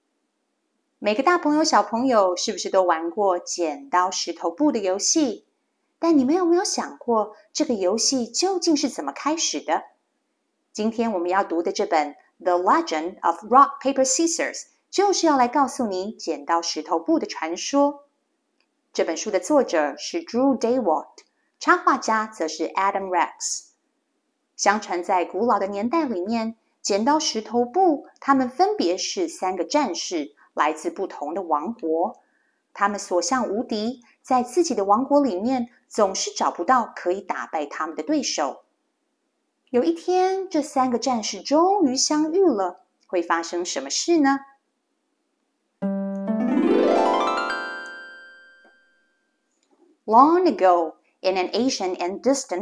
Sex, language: female, Chinese